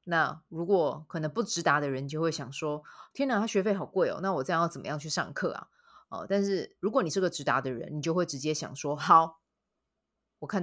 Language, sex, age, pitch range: Chinese, female, 20-39, 155-215 Hz